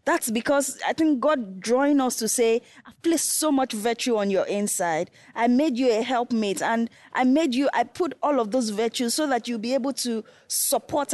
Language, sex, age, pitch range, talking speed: English, female, 10-29, 210-260 Hz, 210 wpm